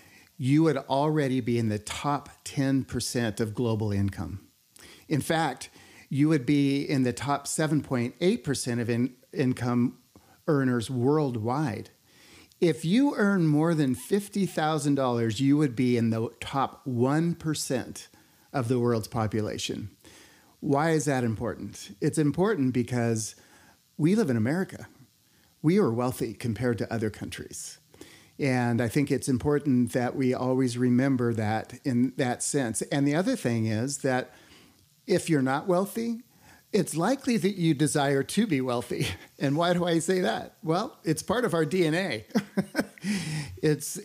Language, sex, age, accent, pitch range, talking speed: English, male, 40-59, American, 125-160 Hz, 140 wpm